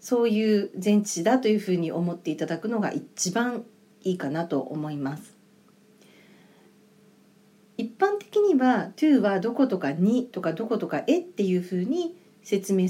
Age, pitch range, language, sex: 40-59, 185-255 Hz, Japanese, female